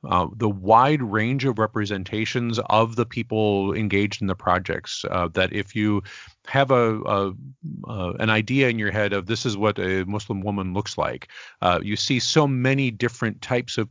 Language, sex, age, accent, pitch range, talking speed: English, male, 40-59, American, 100-130 Hz, 185 wpm